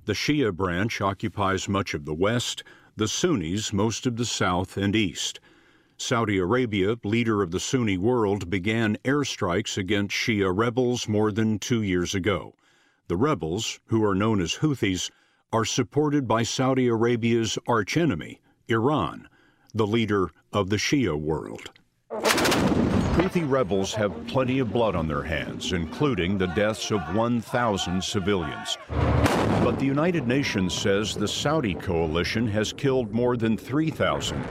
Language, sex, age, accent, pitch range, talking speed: English, male, 50-69, American, 95-130 Hz, 140 wpm